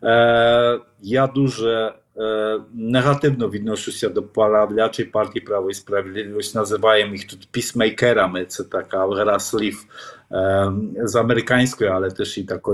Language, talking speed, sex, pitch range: Ukrainian, 125 wpm, male, 100-125 Hz